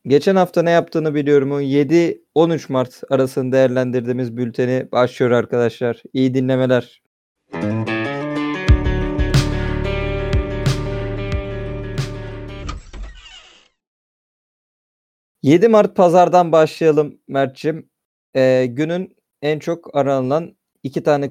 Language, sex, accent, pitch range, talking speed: Turkish, male, native, 120-150 Hz, 75 wpm